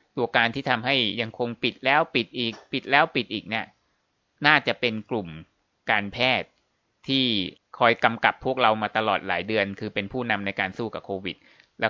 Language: Thai